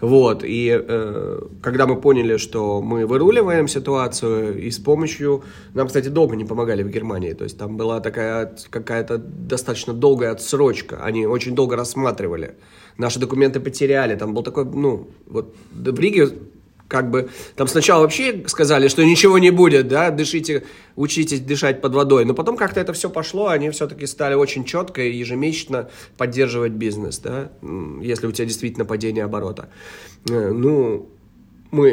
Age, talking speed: 30-49, 155 wpm